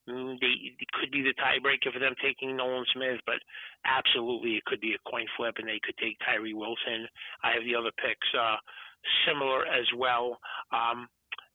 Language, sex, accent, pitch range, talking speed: English, male, American, 115-140 Hz, 180 wpm